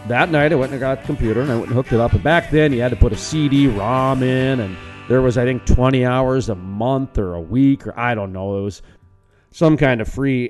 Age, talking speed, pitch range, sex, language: 40-59, 270 wpm, 110-145 Hz, male, English